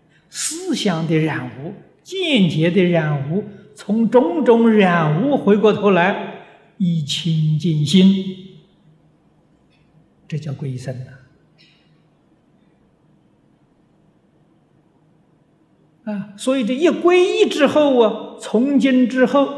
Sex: male